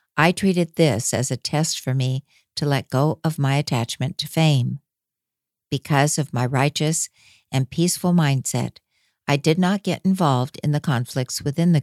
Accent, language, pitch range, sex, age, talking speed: American, English, 130-155 Hz, female, 60-79, 165 wpm